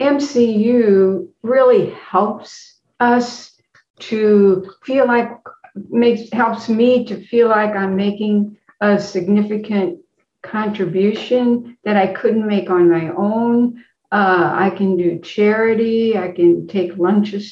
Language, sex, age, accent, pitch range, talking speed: English, female, 60-79, American, 185-220 Hz, 115 wpm